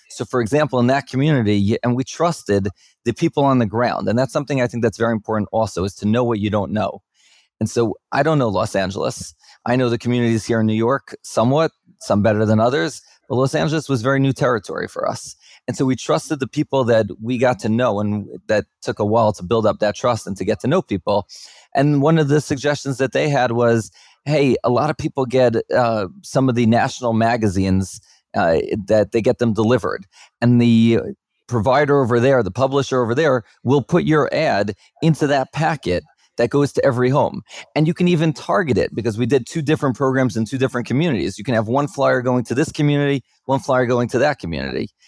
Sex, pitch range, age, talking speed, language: male, 110-140 Hz, 30-49, 220 wpm, English